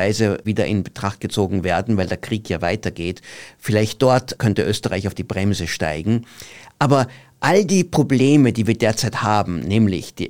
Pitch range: 105-135 Hz